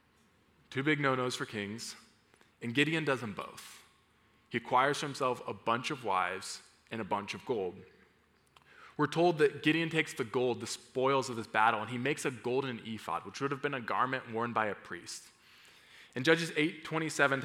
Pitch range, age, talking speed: 115-150 Hz, 20-39, 185 wpm